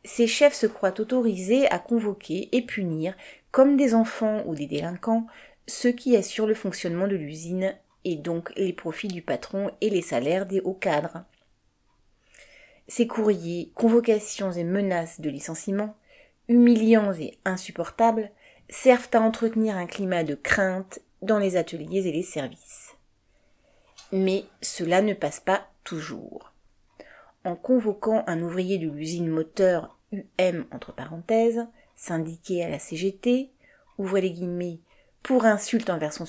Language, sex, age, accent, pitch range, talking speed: French, female, 30-49, French, 170-225 Hz, 140 wpm